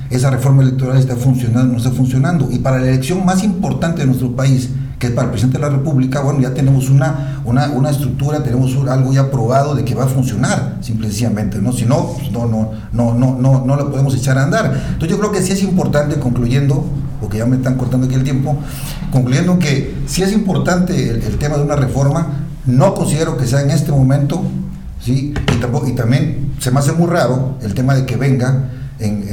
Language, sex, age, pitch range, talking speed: Spanish, male, 50-69, 125-140 Hz, 215 wpm